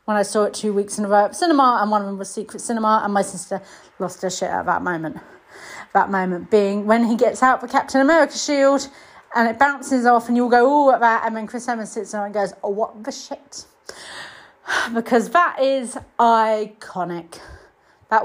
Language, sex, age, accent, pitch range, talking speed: English, female, 30-49, British, 200-260 Hz, 215 wpm